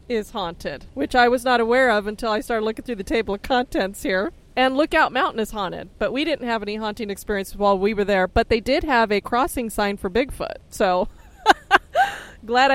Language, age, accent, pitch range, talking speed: English, 30-49, American, 200-245 Hz, 210 wpm